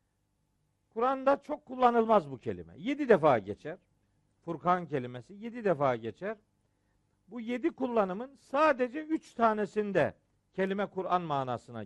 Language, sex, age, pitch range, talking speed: Turkish, male, 50-69, 130-215 Hz, 110 wpm